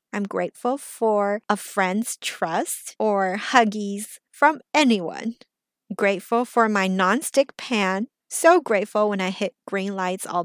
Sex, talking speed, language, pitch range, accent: female, 130 wpm, English, 195-240 Hz, American